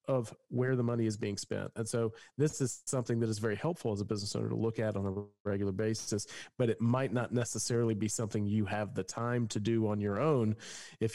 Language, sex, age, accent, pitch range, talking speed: English, male, 40-59, American, 105-125 Hz, 235 wpm